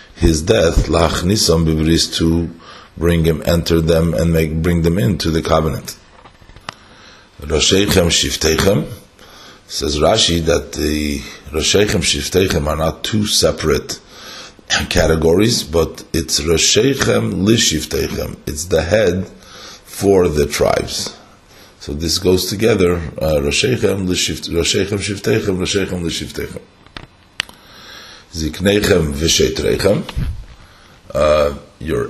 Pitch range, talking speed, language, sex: 80-95 Hz, 100 wpm, English, male